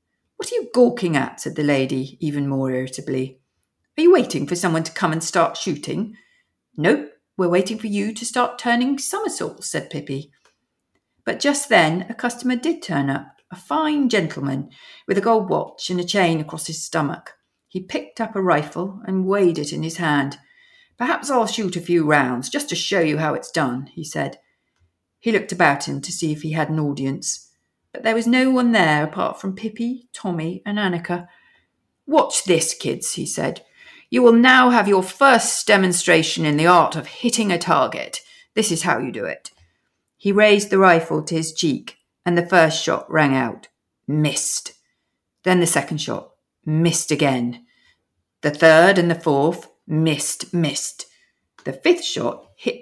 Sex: female